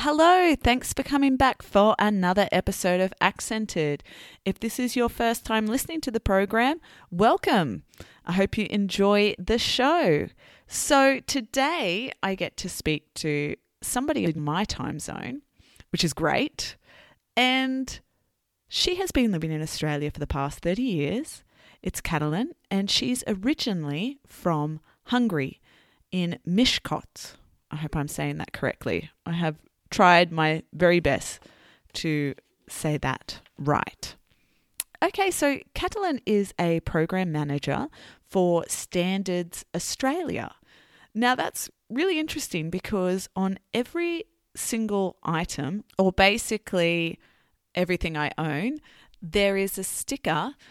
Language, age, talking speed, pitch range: English, 20-39, 125 wpm, 165-255 Hz